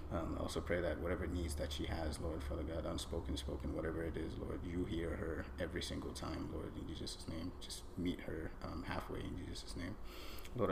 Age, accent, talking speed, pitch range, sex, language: 30-49, American, 205 wpm, 80-90 Hz, male, English